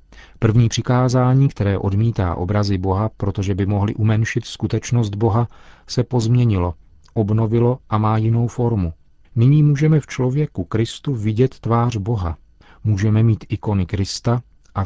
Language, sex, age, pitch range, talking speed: Czech, male, 40-59, 100-120 Hz, 130 wpm